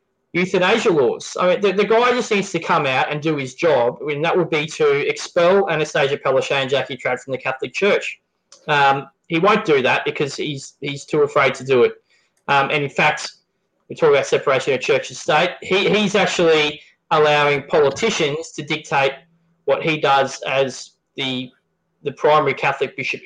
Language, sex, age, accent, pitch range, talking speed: English, male, 20-39, Australian, 150-200 Hz, 190 wpm